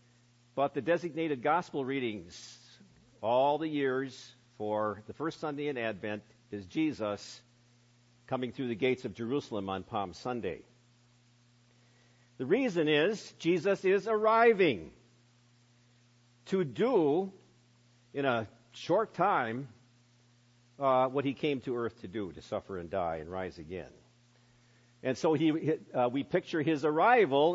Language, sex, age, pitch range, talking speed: English, male, 50-69, 120-155 Hz, 130 wpm